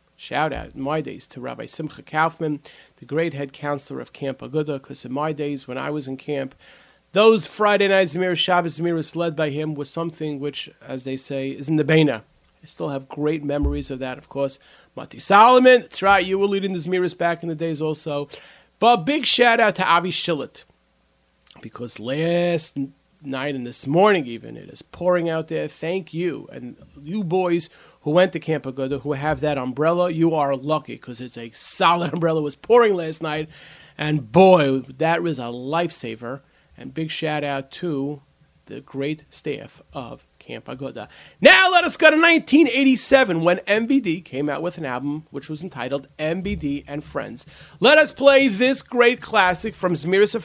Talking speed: 185 wpm